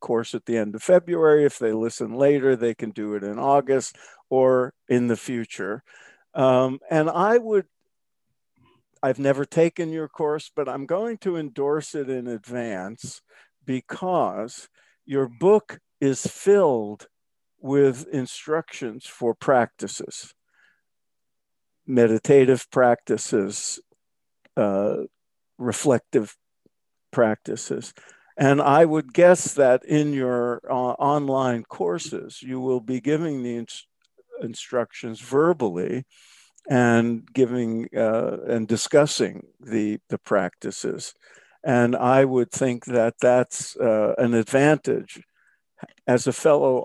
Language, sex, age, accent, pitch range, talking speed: English, male, 50-69, American, 120-145 Hz, 115 wpm